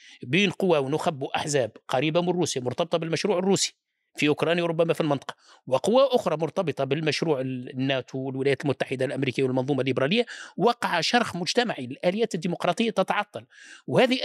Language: Arabic